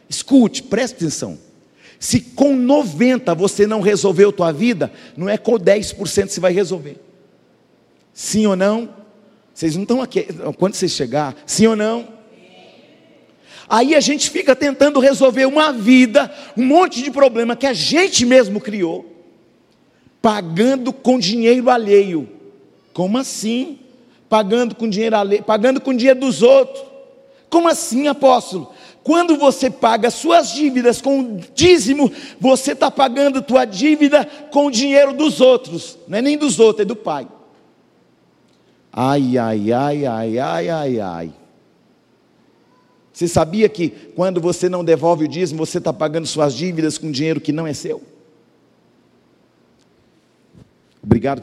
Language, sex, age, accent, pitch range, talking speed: Portuguese, male, 50-69, Brazilian, 170-265 Hz, 140 wpm